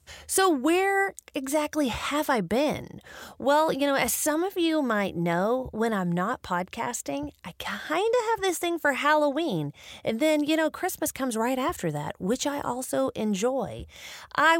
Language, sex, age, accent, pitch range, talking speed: English, female, 30-49, American, 180-290 Hz, 170 wpm